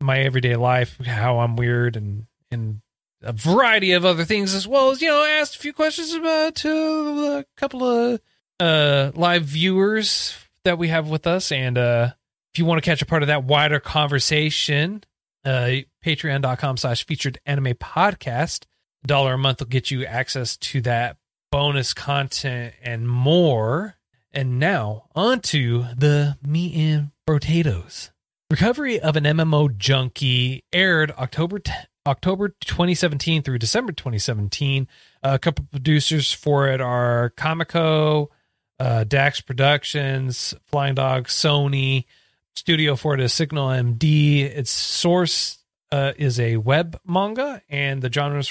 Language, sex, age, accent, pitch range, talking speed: English, male, 30-49, American, 125-170 Hz, 145 wpm